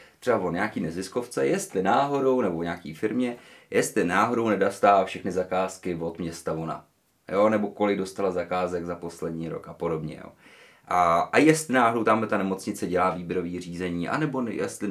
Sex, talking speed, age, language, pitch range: male, 155 wpm, 30-49, Czech, 85-110 Hz